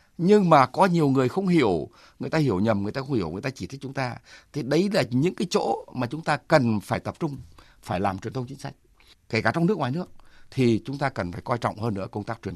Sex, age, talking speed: male, 60-79, 275 wpm